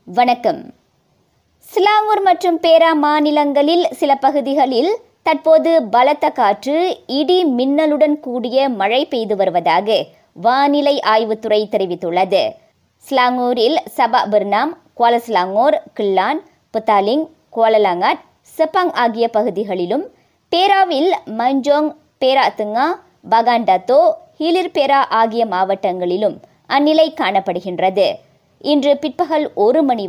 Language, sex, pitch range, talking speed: Tamil, male, 215-310 Hz, 80 wpm